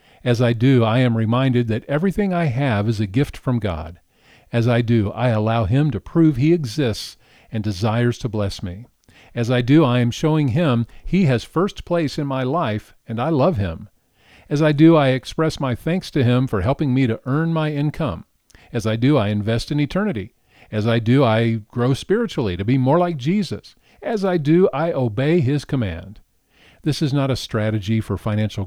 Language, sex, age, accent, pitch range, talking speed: English, male, 50-69, American, 105-145 Hz, 200 wpm